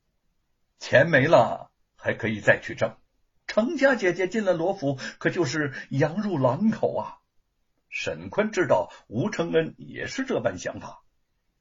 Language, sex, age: Chinese, male, 60-79